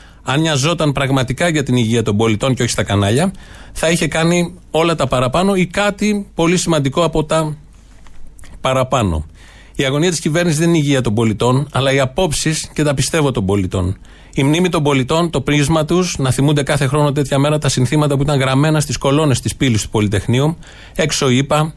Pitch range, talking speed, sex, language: 120-155 Hz, 185 wpm, male, Greek